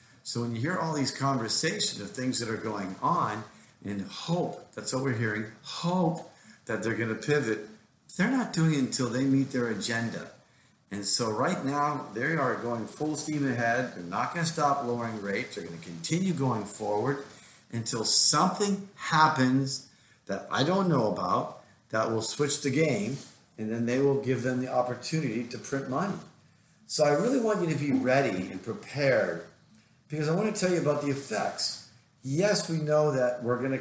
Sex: male